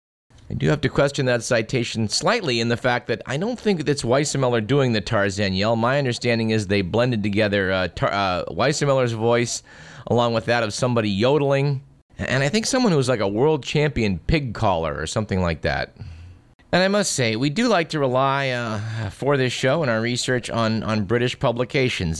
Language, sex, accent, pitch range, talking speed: English, male, American, 95-125 Hz, 195 wpm